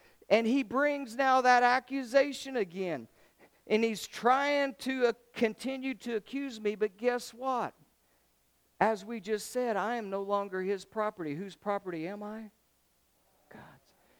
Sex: male